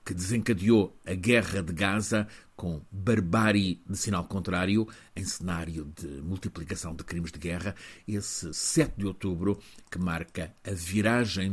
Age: 50-69